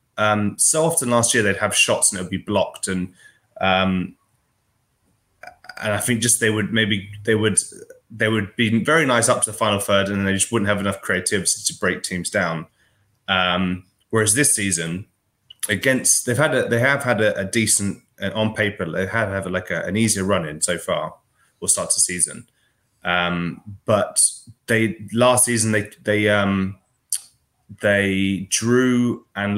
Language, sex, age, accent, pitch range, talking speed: English, male, 20-39, British, 95-115 Hz, 175 wpm